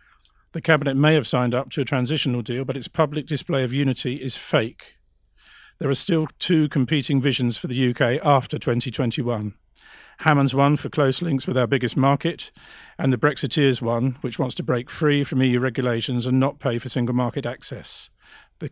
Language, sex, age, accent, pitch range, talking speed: English, male, 50-69, British, 120-140 Hz, 185 wpm